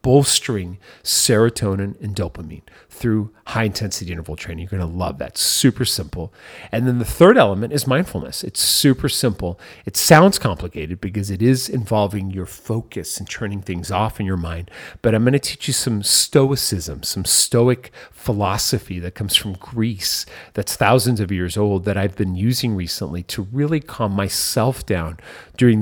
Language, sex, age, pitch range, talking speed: English, male, 40-59, 95-120 Hz, 165 wpm